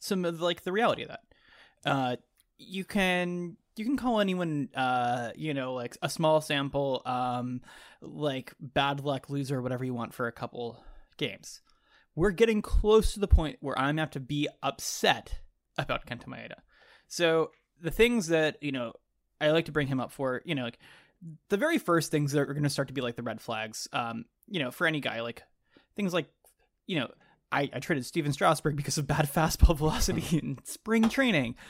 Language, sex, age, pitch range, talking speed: English, male, 20-39, 125-175 Hz, 200 wpm